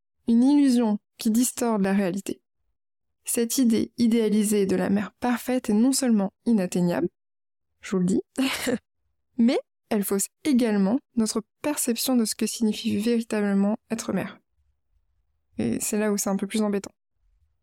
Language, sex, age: French, female, 20-39